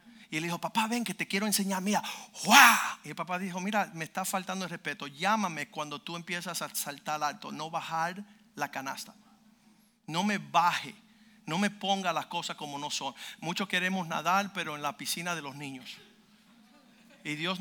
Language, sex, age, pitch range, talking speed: Spanish, male, 50-69, 165-210 Hz, 185 wpm